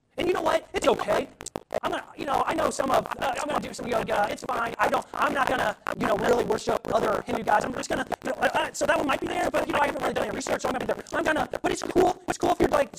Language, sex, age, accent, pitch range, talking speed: English, male, 40-59, American, 300-355 Hz, 325 wpm